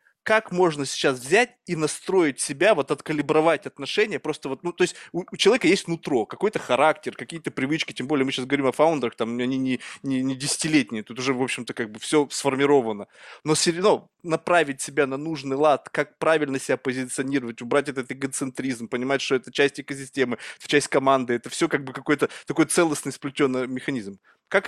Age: 20-39